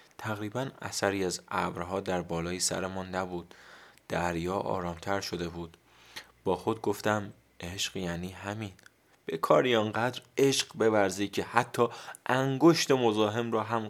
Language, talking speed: Persian, 125 wpm